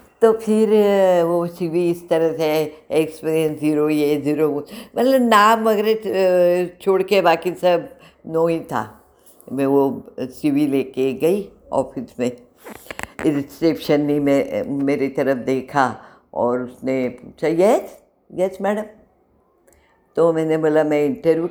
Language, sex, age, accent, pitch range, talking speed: Hindi, female, 60-79, native, 135-190 Hz, 125 wpm